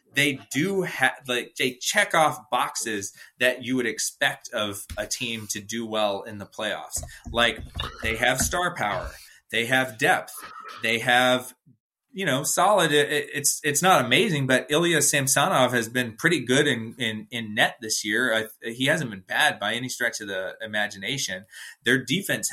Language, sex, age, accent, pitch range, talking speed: English, male, 30-49, American, 110-145 Hz, 175 wpm